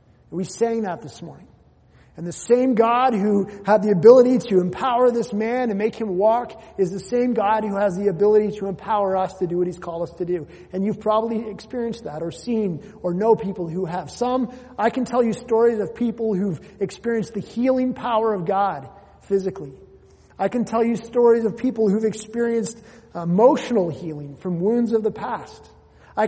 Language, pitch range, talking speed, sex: English, 180-225 Hz, 195 wpm, male